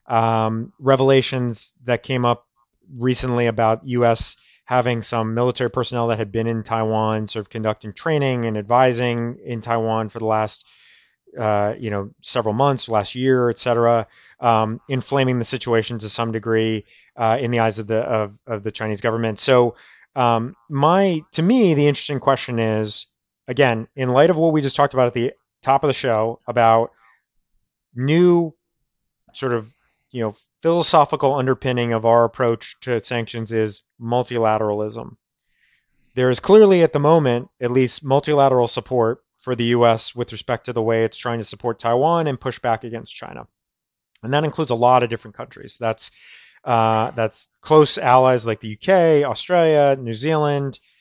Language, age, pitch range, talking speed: English, 30-49, 115-130 Hz, 165 wpm